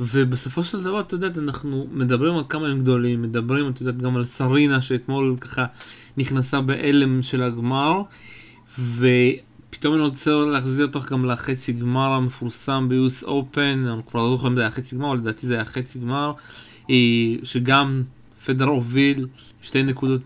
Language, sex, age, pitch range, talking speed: Hebrew, male, 20-39, 125-150 Hz, 160 wpm